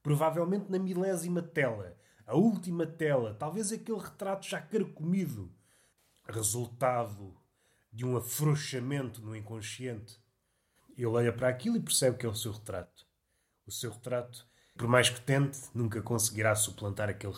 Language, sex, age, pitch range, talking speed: Portuguese, male, 30-49, 110-140 Hz, 140 wpm